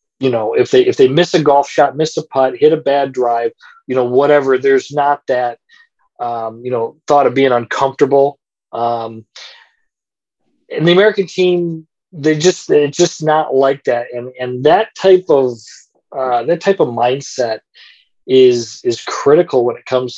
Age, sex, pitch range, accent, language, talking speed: 40-59, male, 125-160 Hz, American, English, 170 wpm